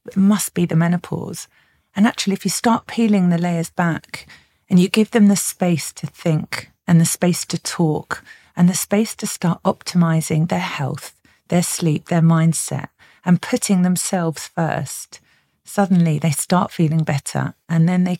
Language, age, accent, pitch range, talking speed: English, 40-59, British, 150-180 Hz, 170 wpm